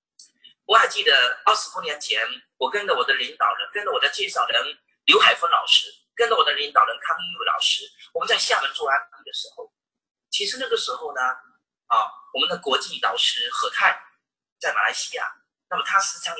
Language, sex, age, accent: Chinese, male, 40-59, native